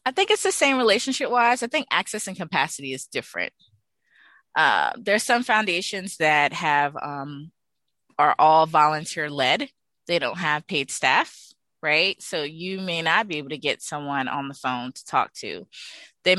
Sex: female